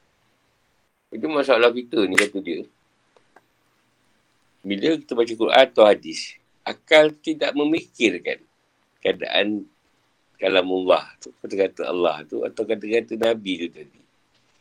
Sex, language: male, Malay